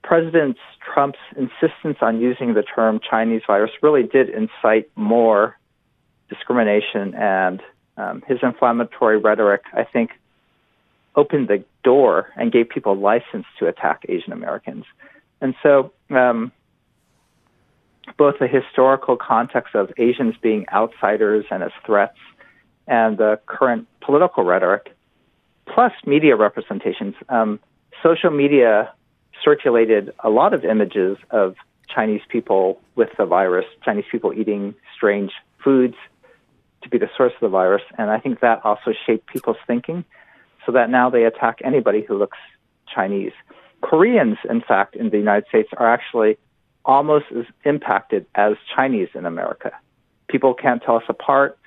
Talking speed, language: 135 wpm, English